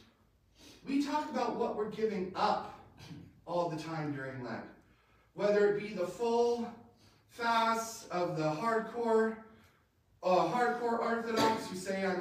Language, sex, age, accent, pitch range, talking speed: English, male, 30-49, American, 155-235 Hz, 135 wpm